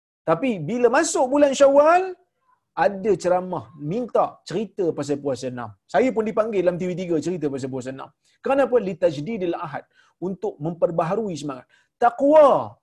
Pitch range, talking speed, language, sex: 165-260 Hz, 135 wpm, Malayalam, male